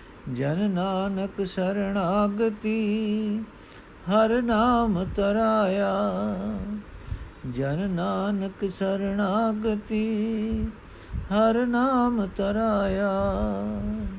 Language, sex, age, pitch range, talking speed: Punjabi, male, 50-69, 140-190 Hz, 40 wpm